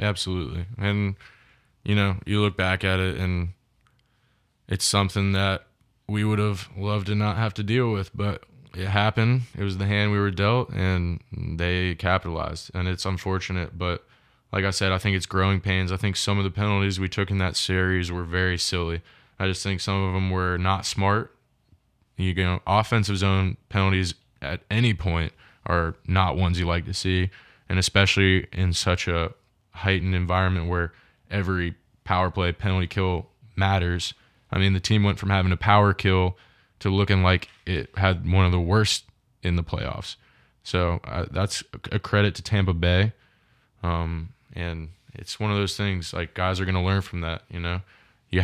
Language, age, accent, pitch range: English, 20-39, American, 90-105 Hz